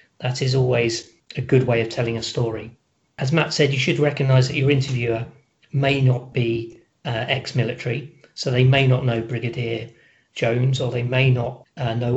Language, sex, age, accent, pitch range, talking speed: English, male, 40-59, British, 120-135 Hz, 180 wpm